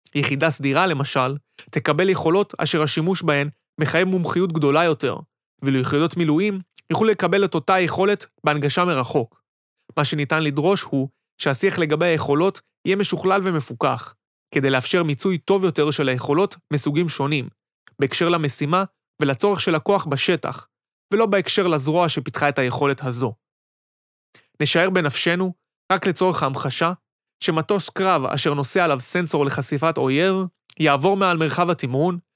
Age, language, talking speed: 30-49, Hebrew, 130 wpm